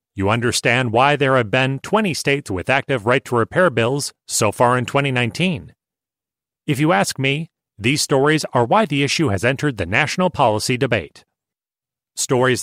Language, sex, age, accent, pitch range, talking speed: English, male, 30-49, American, 120-155 Hz, 155 wpm